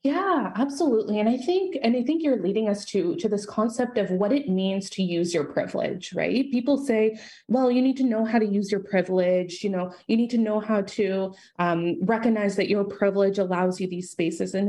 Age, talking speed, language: 20-39, 220 wpm, English